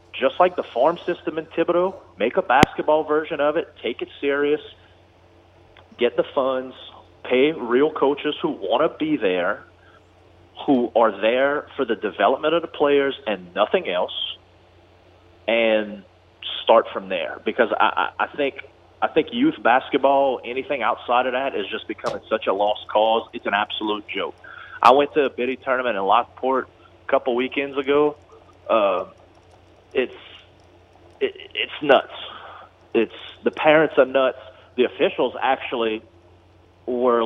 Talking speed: 140 wpm